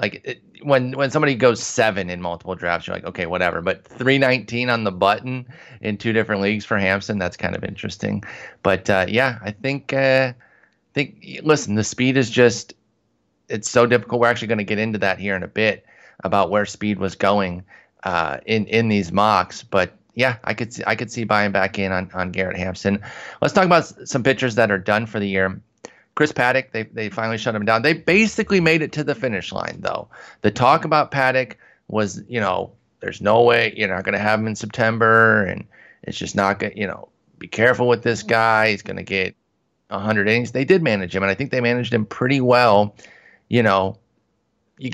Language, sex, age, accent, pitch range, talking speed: English, male, 30-49, American, 100-125 Hz, 215 wpm